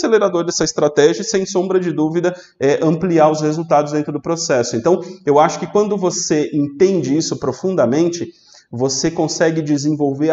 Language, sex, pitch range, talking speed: Portuguese, male, 150-200 Hz, 155 wpm